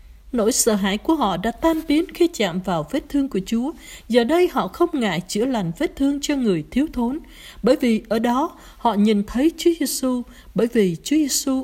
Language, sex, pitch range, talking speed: Vietnamese, female, 200-300 Hz, 210 wpm